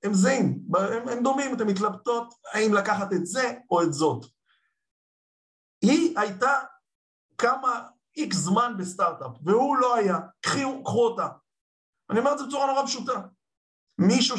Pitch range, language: 145-205 Hz, Hebrew